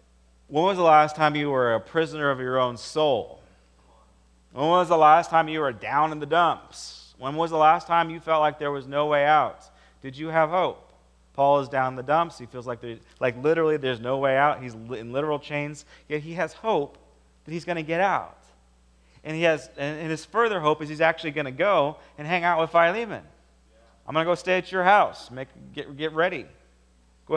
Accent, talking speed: American, 225 wpm